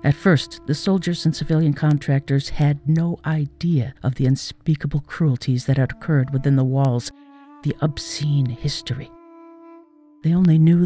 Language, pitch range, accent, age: English, 135-175 Hz, American, 50-69